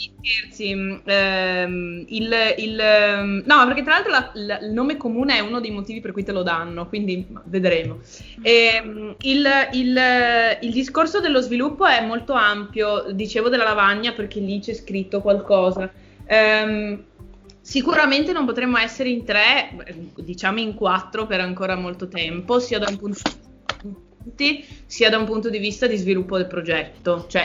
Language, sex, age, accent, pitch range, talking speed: Italian, female, 20-39, native, 190-230 Hz, 155 wpm